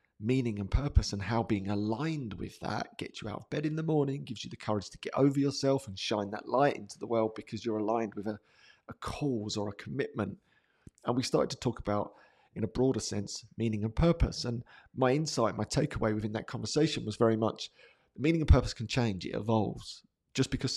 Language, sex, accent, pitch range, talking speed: English, male, British, 110-130 Hz, 215 wpm